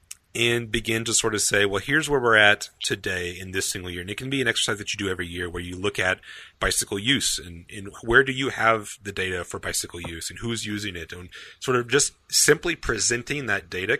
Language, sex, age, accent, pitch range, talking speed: English, male, 30-49, American, 95-120 Hz, 240 wpm